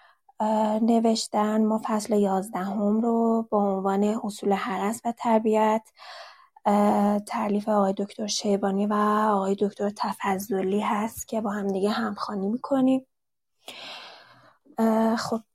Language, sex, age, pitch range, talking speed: Persian, female, 20-39, 205-230 Hz, 100 wpm